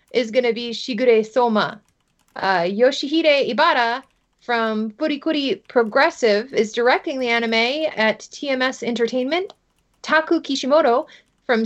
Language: English